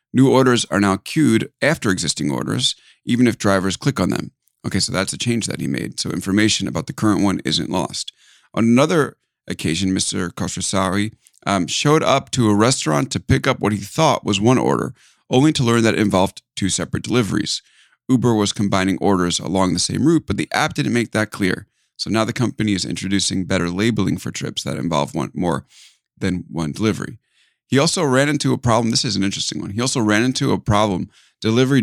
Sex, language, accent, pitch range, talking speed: male, English, American, 100-135 Hz, 205 wpm